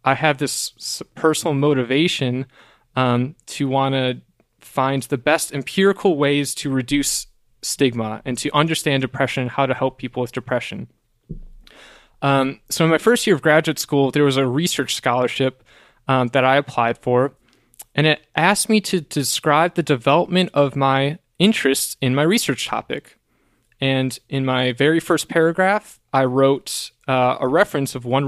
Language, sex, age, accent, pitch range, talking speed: English, male, 20-39, American, 130-155 Hz, 160 wpm